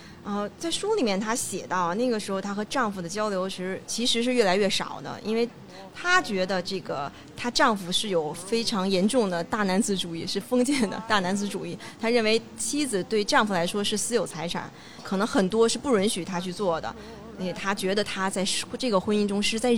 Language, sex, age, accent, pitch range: Chinese, female, 30-49, native, 185-240 Hz